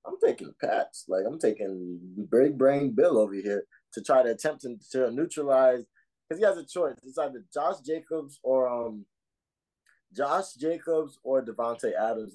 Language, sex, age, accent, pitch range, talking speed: English, male, 20-39, American, 105-140 Hz, 165 wpm